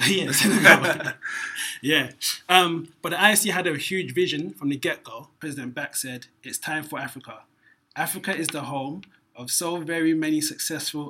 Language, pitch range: English, 130-155 Hz